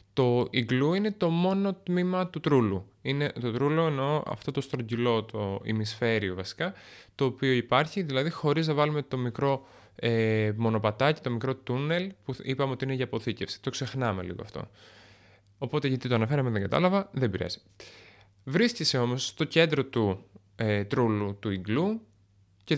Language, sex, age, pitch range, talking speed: Greek, male, 20-39, 105-150 Hz, 160 wpm